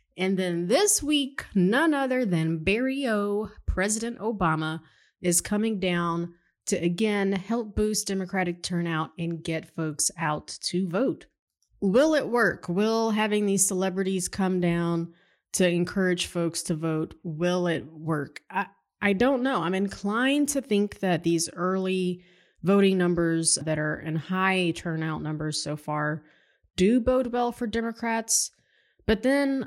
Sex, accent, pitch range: female, American, 160-205 Hz